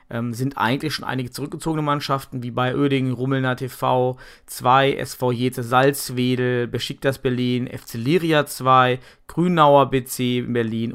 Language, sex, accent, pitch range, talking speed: German, male, German, 125-140 Hz, 125 wpm